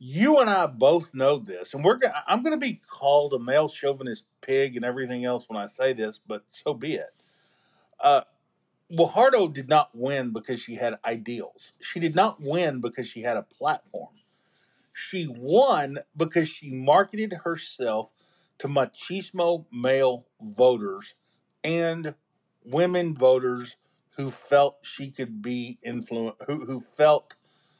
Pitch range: 125-185 Hz